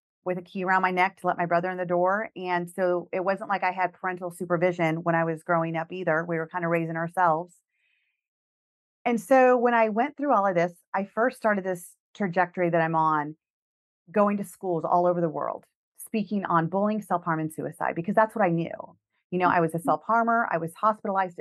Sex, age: female, 40-59